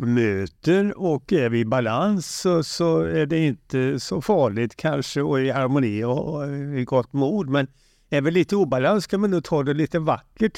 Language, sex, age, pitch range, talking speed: Swedish, male, 60-79, 125-155 Hz, 185 wpm